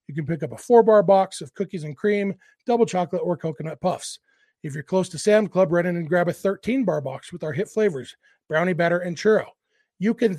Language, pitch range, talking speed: English, 155-190 Hz, 225 wpm